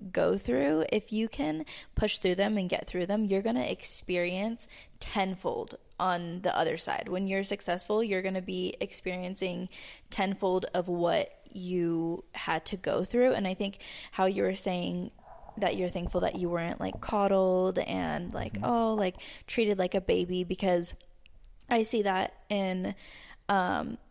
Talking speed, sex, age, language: 160 wpm, female, 10-29, English